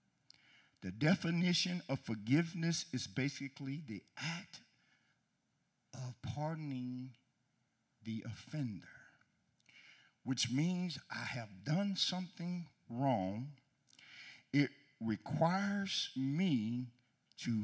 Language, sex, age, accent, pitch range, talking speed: English, male, 50-69, American, 115-180 Hz, 80 wpm